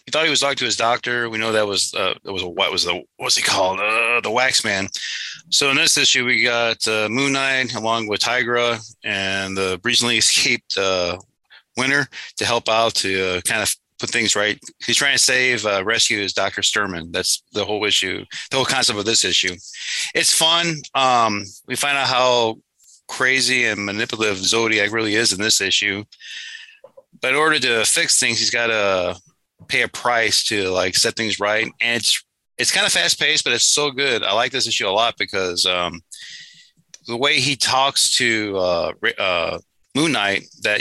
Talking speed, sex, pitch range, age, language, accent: 195 wpm, male, 100-130 Hz, 30-49, English, American